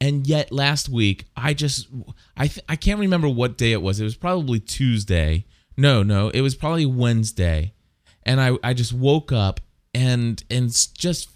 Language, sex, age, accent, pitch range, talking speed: English, male, 30-49, American, 105-140 Hz, 180 wpm